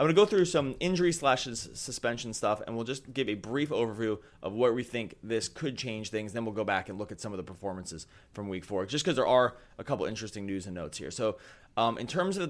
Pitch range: 105-125 Hz